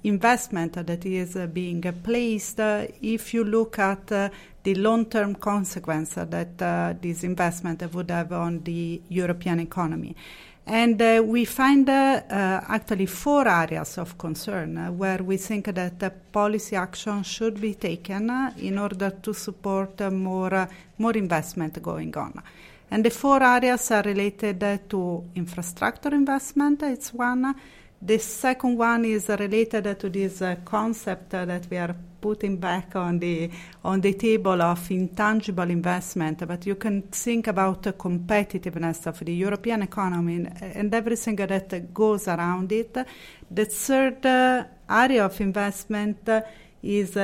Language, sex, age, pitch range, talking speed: English, female, 40-59, 180-225 Hz, 145 wpm